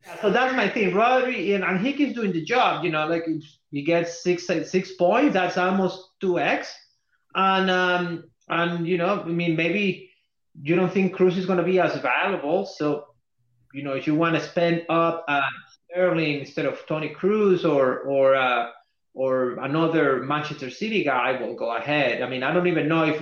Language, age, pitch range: English, 30-49, 140-175 Hz